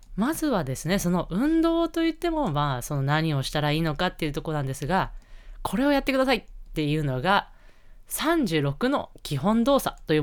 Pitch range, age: 140-215 Hz, 20-39